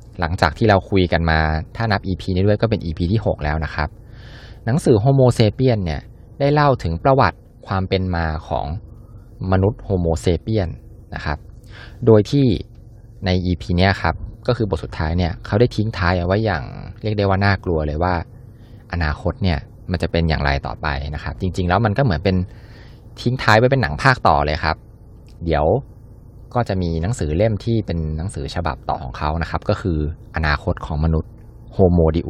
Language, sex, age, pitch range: Thai, male, 20-39, 85-115 Hz